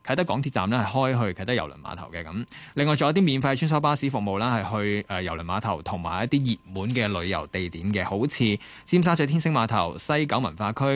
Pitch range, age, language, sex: 100-140 Hz, 20-39, Chinese, male